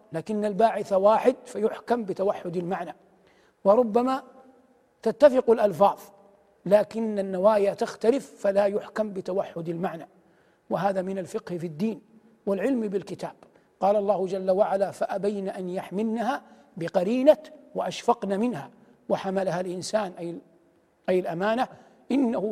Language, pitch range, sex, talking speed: Arabic, 185-225 Hz, male, 105 wpm